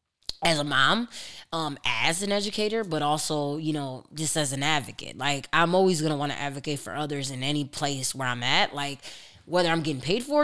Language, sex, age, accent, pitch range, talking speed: English, female, 20-39, American, 140-165 Hz, 215 wpm